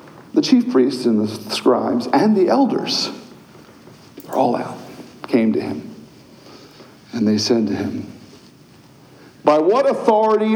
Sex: male